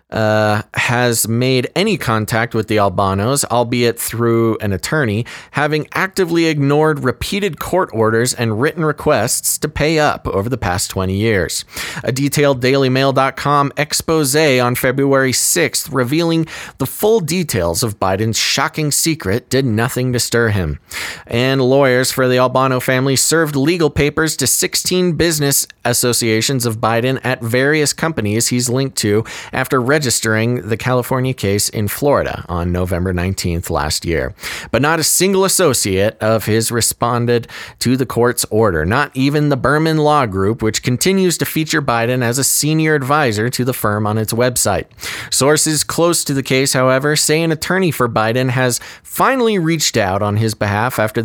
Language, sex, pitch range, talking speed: English, male, 110-150 Hz, 155 wpm